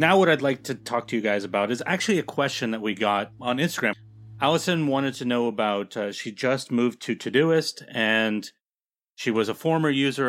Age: 30-49